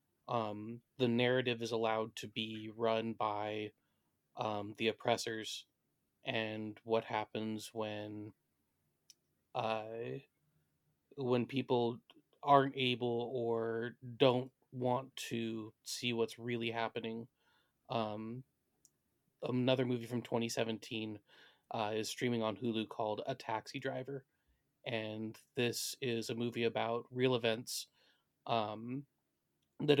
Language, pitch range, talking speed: English, 115-125 Hz, 105 wpm